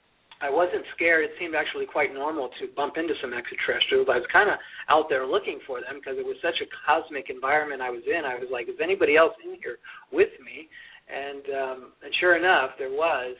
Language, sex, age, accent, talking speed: English, male, 40-59, American, 220 wpm